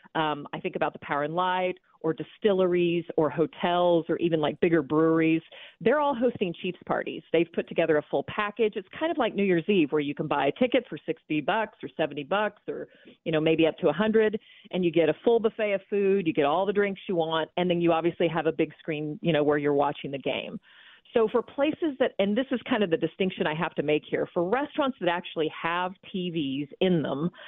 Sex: female